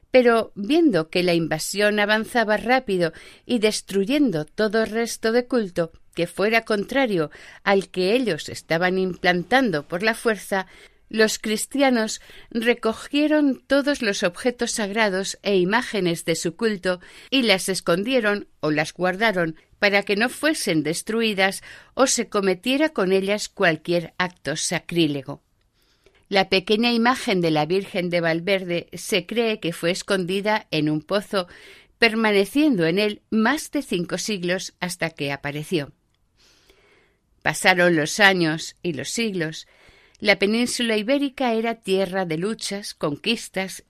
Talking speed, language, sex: 130 wpm, Spanish, female